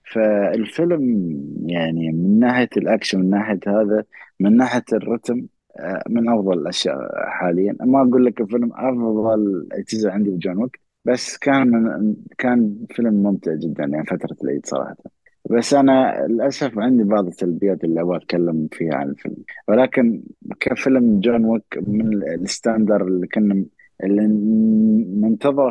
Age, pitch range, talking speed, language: 30-49, 105-125 Hz, 130 wpm, Arabic